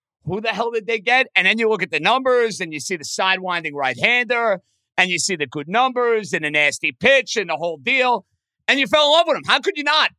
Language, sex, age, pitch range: English, male, 50-69, 180-245 Hz